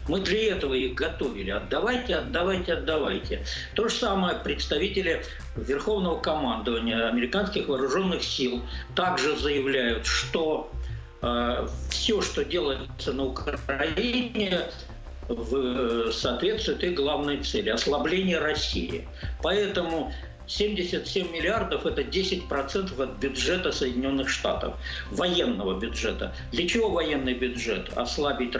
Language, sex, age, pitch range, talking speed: Russian, male, 60-79, 120-185 Hz, 105 wpm